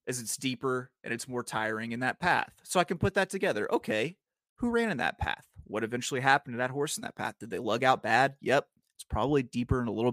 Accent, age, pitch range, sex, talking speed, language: American, 30-49, 125-185 Hz, male, 255 wpm, English